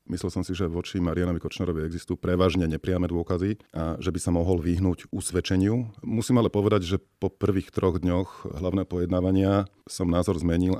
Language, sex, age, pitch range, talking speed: Slovak, male, 40-59, 85-95 Hz, 170 wpm